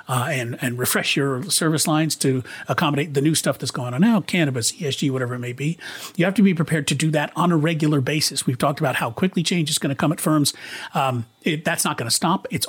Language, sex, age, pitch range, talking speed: English, male, 40-59, 135-180 Hz, 250 wpm